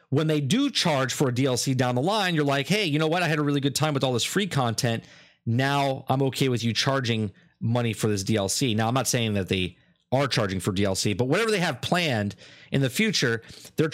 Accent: American